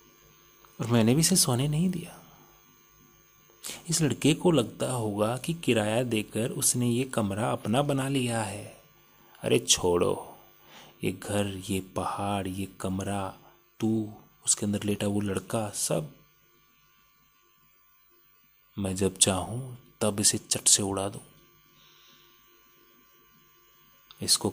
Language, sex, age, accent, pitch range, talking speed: Hindi, male, 30-49, native, 100-140 Hz, 115 wpm